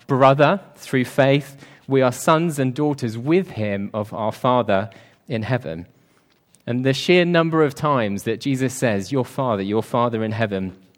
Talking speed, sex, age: 165 wpm, male, 20-39